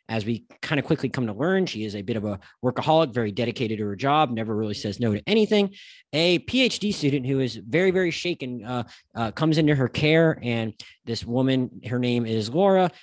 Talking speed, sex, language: 215 wpm, male, English